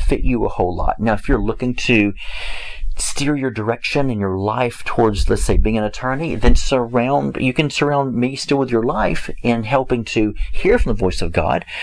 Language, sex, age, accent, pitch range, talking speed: English, male, 40-59, American, 95-130 Hz, 210 wpm